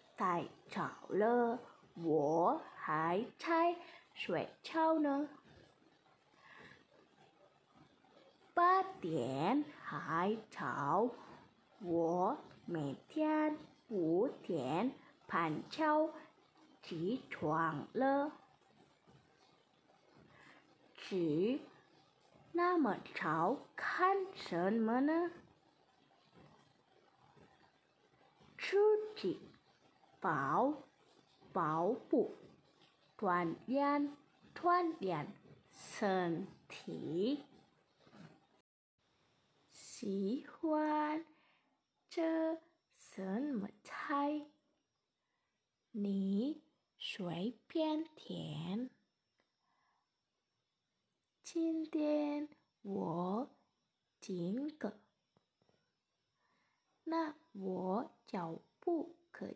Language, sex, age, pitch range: Indonesian, female, 20-39, 200-320 Hz